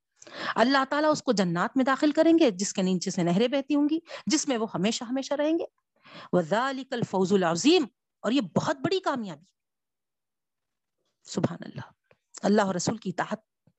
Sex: female